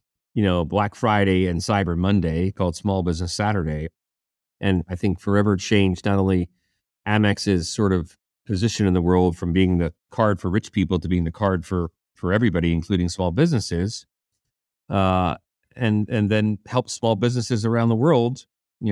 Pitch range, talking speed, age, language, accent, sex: 90-110 Hz, 170 wpm, 40-59, English, American, male